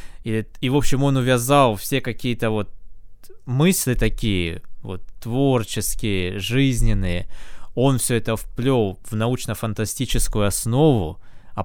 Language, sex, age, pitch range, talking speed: Russian, male, 20-39, 100-120 Hz, 115 wpm